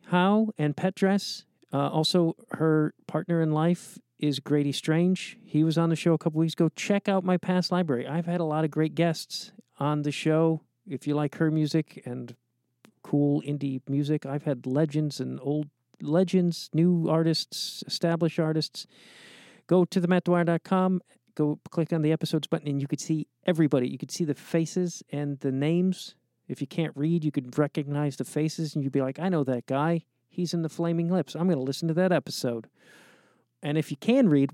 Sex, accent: male, American